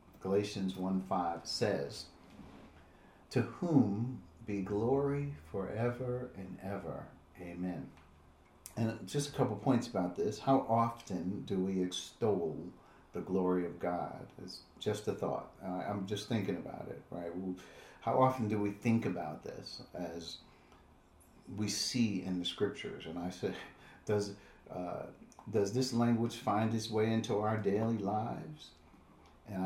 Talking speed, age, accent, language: 135 wpm, 50-69, American, English